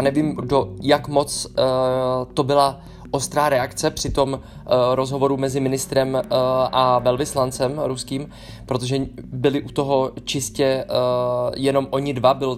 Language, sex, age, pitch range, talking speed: Czech, male, 20-39, 130-145 Hz, 145 wpm